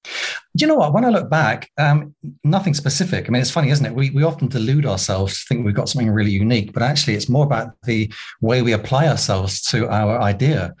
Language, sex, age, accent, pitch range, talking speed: English, male, 30-49, British, 120-155 Hz, 230 wpm